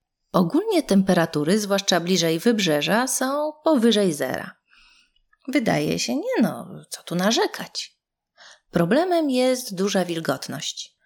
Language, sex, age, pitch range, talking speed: Polish, female, 30-49, 165-245 Hz, 105 wpm